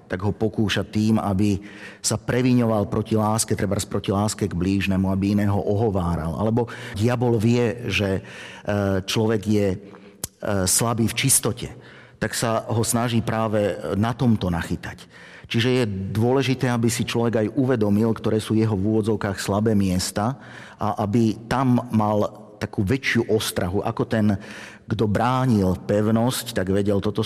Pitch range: 100-115 Hz